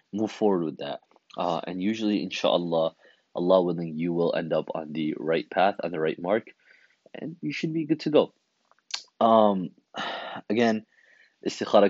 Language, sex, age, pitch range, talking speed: English, male, 20-39, 85-110 Hz, 160 wpm